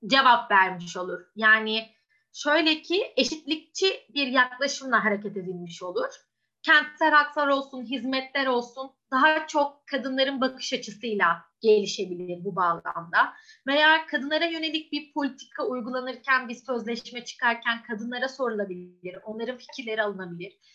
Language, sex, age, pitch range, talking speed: Turkish, female, 30-49, 225-305 Hz, 115 wpm